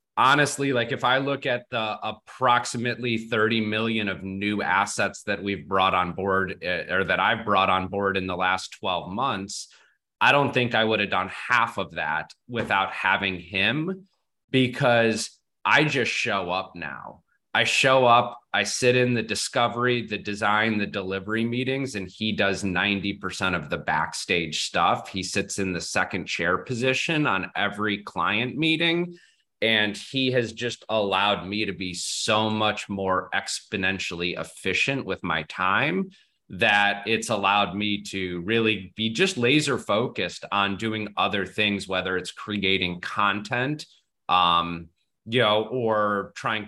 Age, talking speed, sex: 30-49, 155 wpm, male